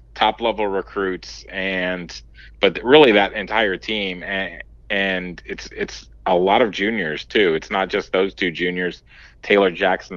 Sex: male